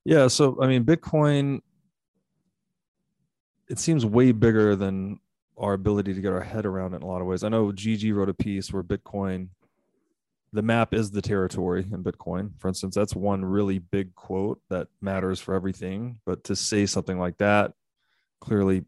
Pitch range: 95-115 Hz